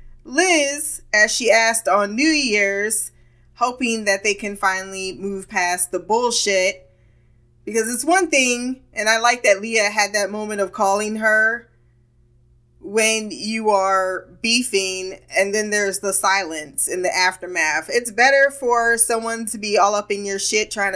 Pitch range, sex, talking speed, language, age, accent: 185-235 Hz, female, 155 wpm, English, 20-39, American